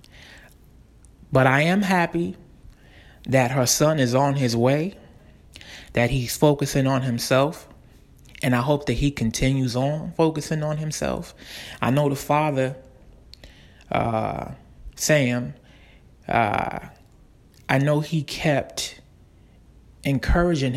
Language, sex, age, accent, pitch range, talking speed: English, male, 20-39, American, 120-155 Hz, 110 wpm